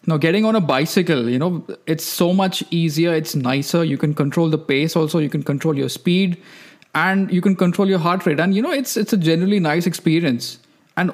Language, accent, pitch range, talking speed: English, Indian, 145-175 Hz, 220 wpm